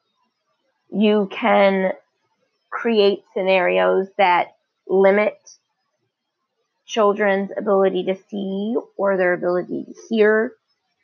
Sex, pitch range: female, 195-250 Hz